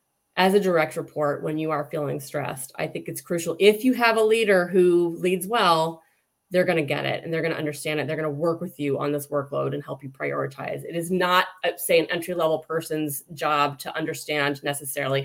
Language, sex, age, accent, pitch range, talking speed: English, female, 30-49, American, 150-180 Hz, 210 wpm